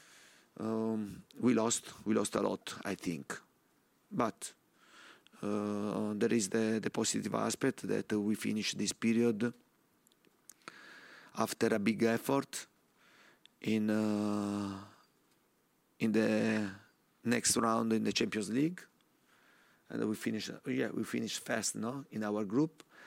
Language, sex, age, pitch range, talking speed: English, male, 30-49, 105-115 Hz, 125 wpm